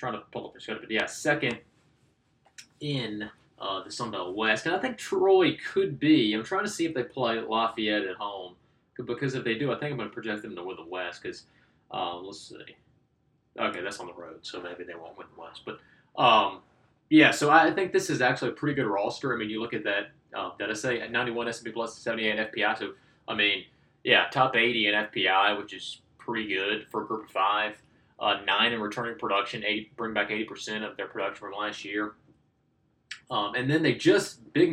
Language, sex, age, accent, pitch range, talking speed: English, male, 20-39, American, 110-135 Hz, 225 wpm